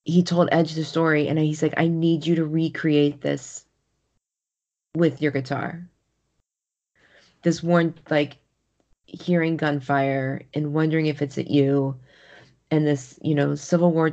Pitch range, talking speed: 145-165 Hz, 145 wpm